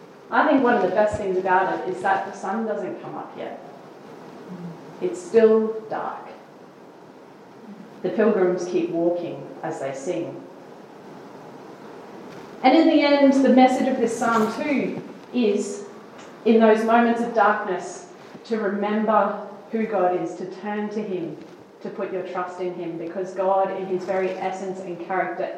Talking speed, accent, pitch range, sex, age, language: 155 wpm, Australian, 180-220 Hz, female, 30-49, English